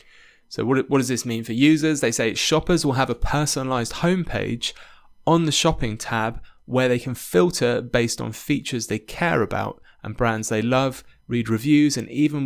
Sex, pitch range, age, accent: male, 110-130 Hz, 20-39, British